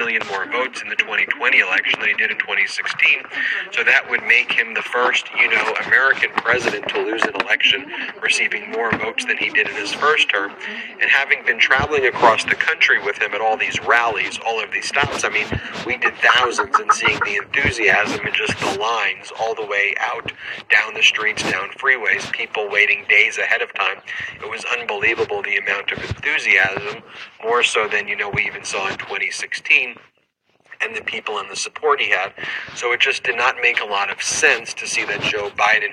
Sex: male